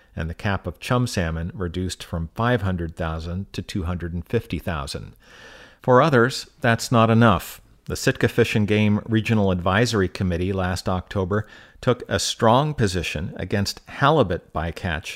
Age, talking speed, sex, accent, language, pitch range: 50-69, 130 wpm, male, American, English, 90-115 Hz